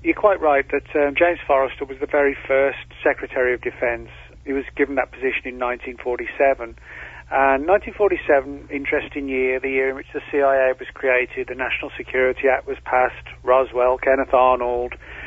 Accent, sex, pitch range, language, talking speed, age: British, male, 125-145 Hz, English, 165 wpm, 40-59